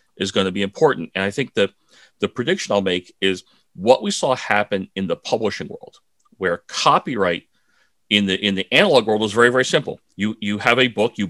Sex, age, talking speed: male, 40-59, 210 wpm